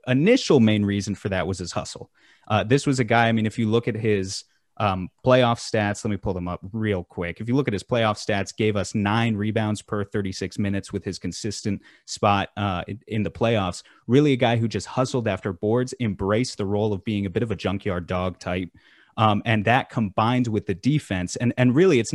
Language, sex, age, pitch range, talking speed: English, male, 30-49, 100-120 Hz, 225 wpm